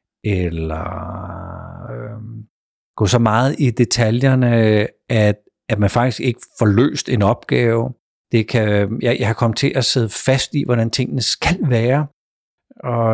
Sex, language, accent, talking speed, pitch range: male, Danish, native, 145 wpm, 105-130 Hz